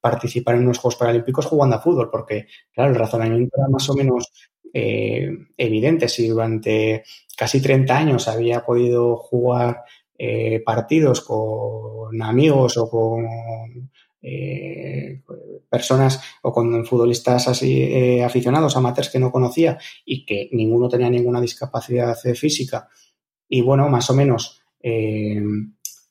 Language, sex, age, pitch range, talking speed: Spanish, male, 20-39, 115-130 Hz, 130 wpm